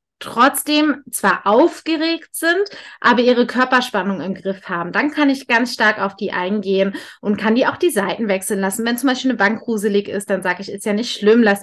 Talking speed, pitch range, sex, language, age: 210 wpm, 210-265 Hz, female, German, 20-39